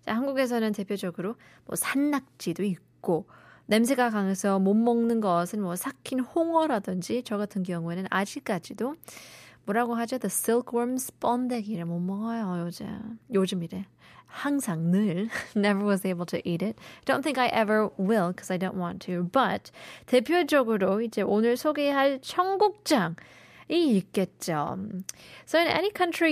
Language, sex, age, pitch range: Korean, female, 20-39, 190-255 Hz